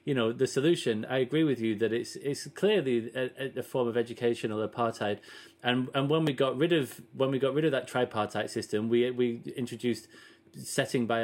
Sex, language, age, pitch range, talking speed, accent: male, English, 30-49, 110-125 Hz, 205 wpm, British